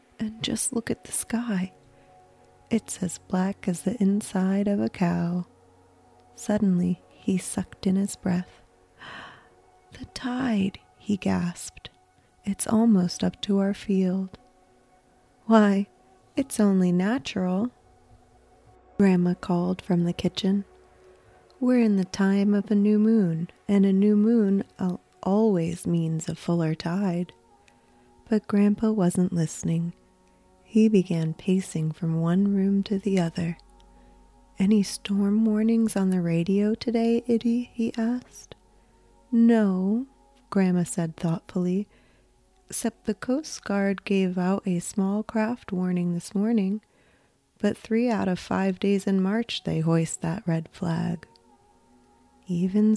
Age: 30-49